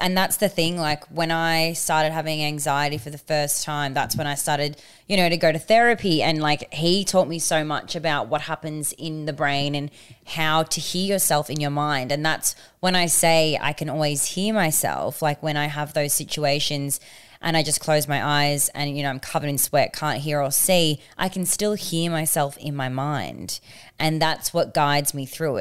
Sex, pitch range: female, 140-165 Hz